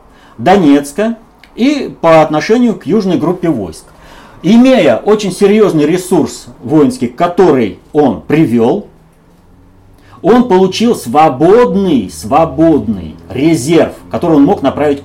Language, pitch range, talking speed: Russian, 125-170 Hz, 100 wpm